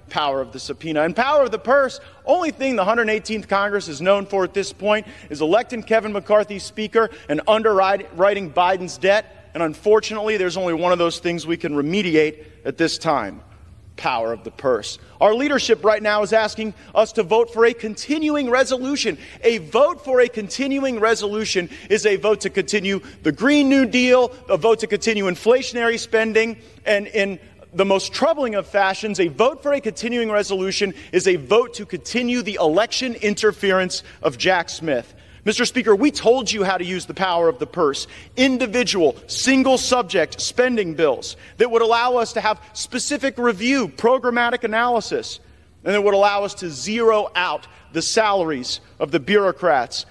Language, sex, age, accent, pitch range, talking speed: English, male, 40-59, American, 180-235 Hz, 175 wpm